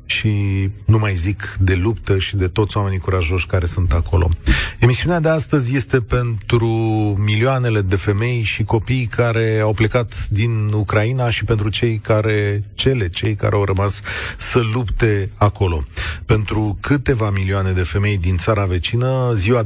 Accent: native